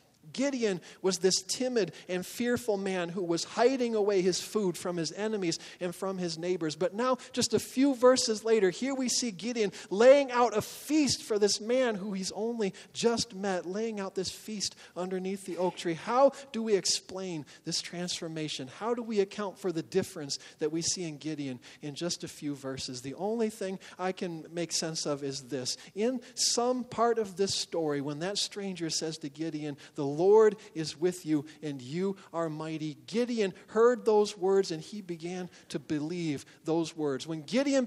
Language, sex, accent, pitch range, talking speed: English, male, American, 160-210 Hz, 185 wpm